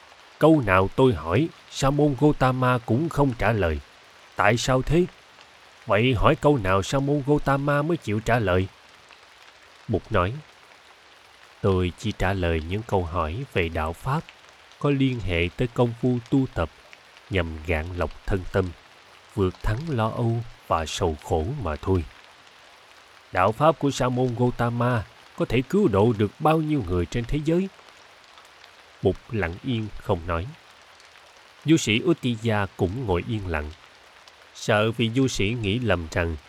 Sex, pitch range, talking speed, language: male, 95-135 Hz, 155 wpm, Vietnamese